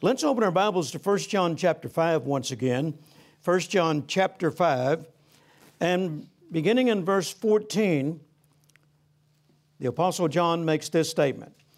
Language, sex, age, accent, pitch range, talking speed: English, male, 60-79, American, 150-175 Hz, 130 wpm